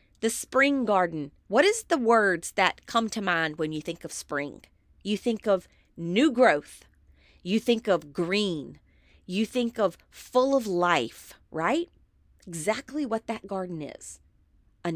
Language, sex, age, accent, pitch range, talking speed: English, female, 40-59, American, 175-260 Hz, 155 wpm